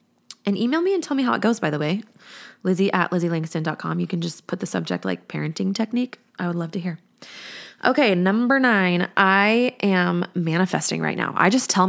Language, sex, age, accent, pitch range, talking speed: English, female, 20-39, American, 160-210 Hz, 200 wpm